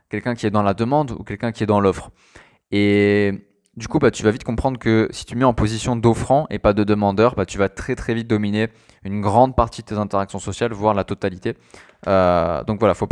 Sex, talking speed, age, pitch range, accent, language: male, 240 wpm, 20-39, 100-120 Hz, French, French